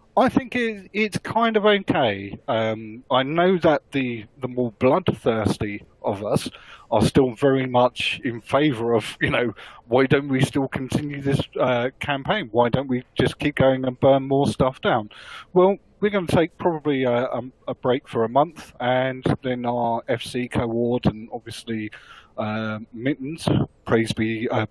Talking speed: 165 wpm